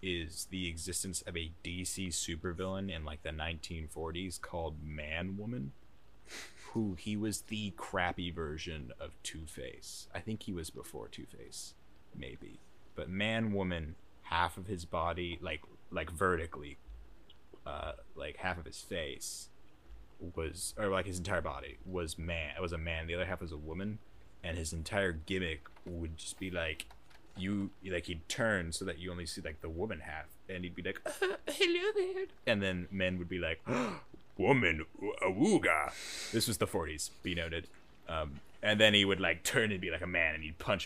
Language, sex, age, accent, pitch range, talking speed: English, male, 20-39, American, 80-100 Hz, 180 wpm